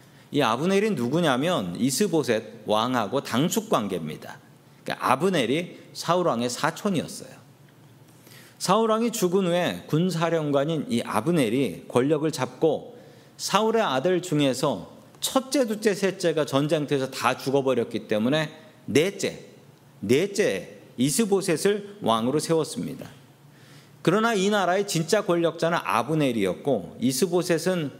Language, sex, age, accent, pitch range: Korean, male, 40-59, native, 135-195 Hz